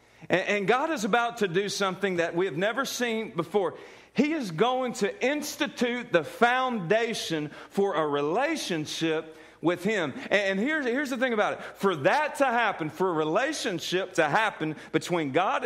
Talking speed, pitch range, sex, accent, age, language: 160 wpm, 145-205 Hz, male, American, 40-59, English